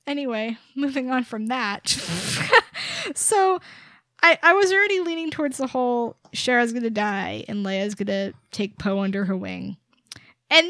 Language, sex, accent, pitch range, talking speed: English, female, American, 245-370 Hz, 155 wpm